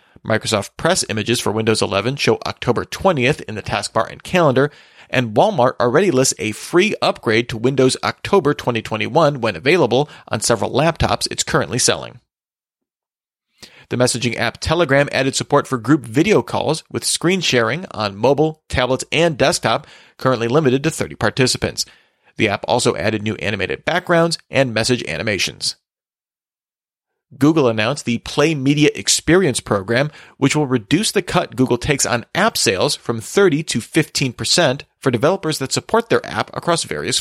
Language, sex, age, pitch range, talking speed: English, male, 30-49, 120-150 Hz, 155 wpm